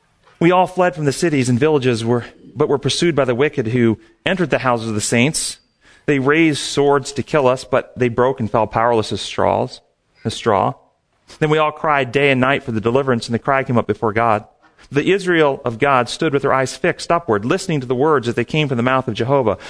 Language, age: English, 40-59